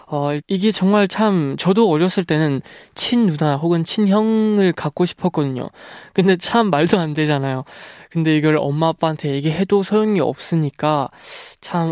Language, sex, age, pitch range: Korean, male, 20-39, 145-185 Hz